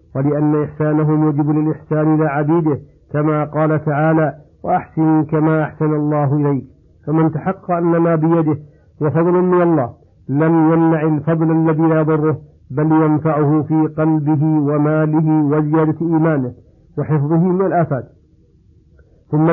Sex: male